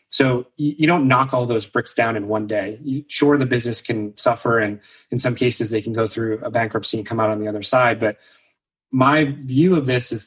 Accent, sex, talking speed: American, male, 230 wpm